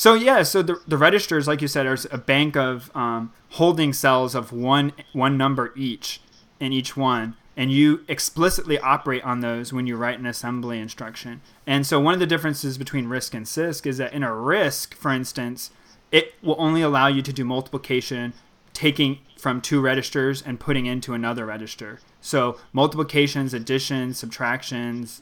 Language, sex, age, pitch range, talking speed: English, male, 20-39, 120-140 Hz, 175 wpm